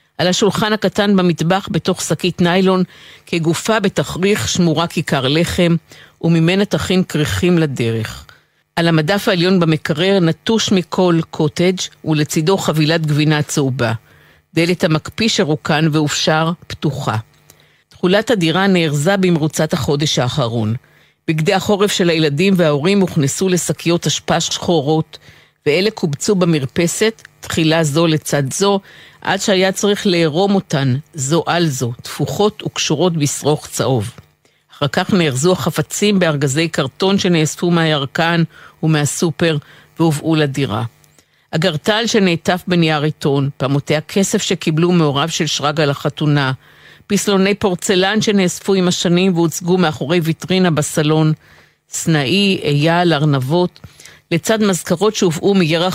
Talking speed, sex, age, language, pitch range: 110 wpm, female, 50-69, Hebrew, 150-185 Hz